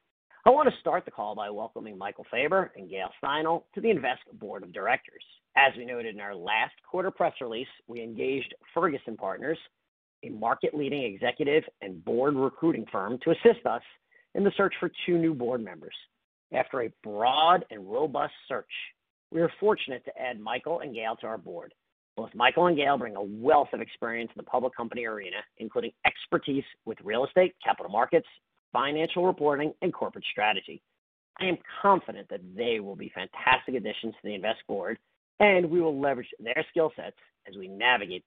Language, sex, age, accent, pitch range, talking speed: English, male, 50-69, American, 120-170 Hz, 180 wpm